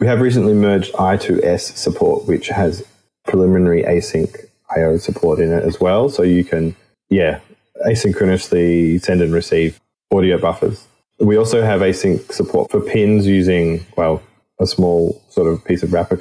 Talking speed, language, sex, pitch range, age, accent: 155 wpm, English, male, 85-105 Hz, 20-39, Australian